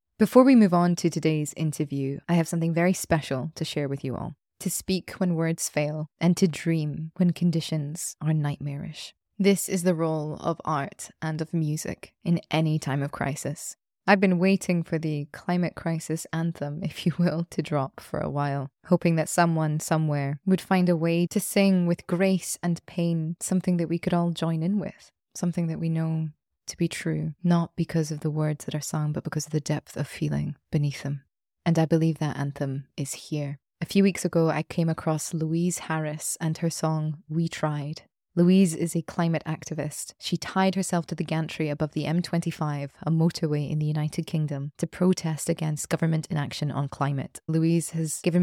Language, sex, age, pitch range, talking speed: English, female, 20-39, 150-175 Hz, 195 wpm